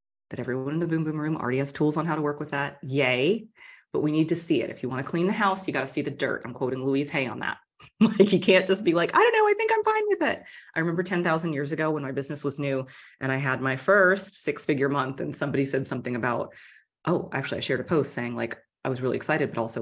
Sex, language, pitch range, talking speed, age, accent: female, English, 130-190 Hz, 285 wpm, 30-49, American